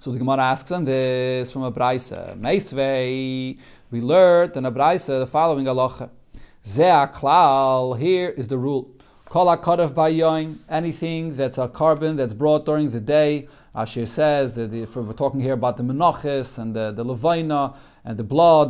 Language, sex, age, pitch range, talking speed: English, male, 40-59, 135-170 Hz, 150 wpm